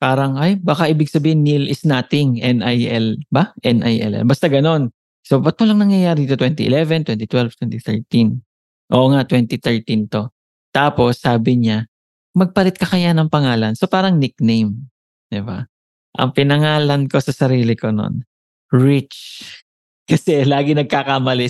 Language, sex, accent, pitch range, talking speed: English, male, Filipino, 120-155 Hz, 130 wpm